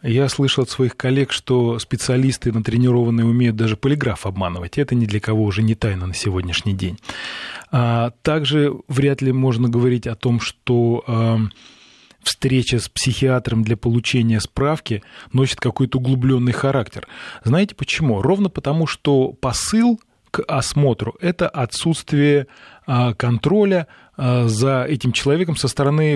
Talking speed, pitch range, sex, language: 130 wpm, 115-140 Hz, male, Russian